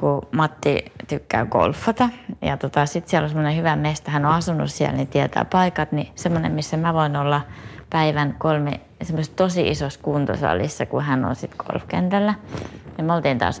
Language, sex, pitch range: Finnish, female, 110-160 Hz